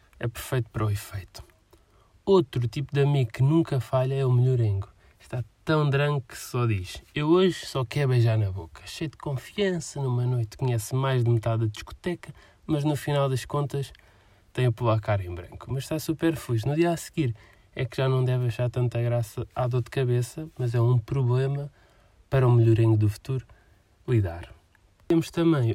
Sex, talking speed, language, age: male, 195 wpm, Portuguese, 20-39